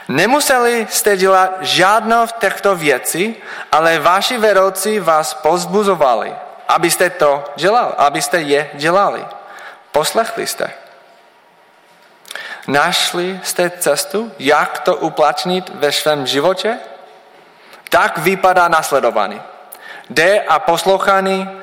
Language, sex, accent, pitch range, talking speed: Czech, male, native, 155-195 Hz, 95 wpm